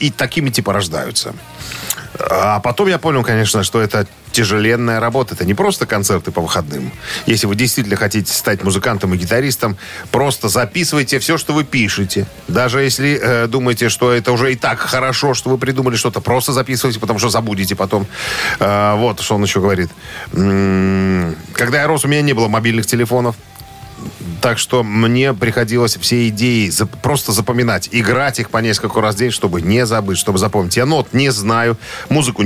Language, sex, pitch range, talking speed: Russian, male, 105-125 Hz, 170 wpm